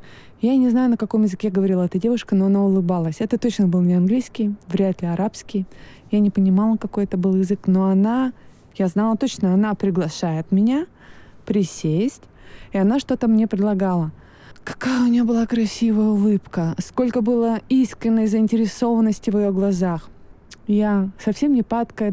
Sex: female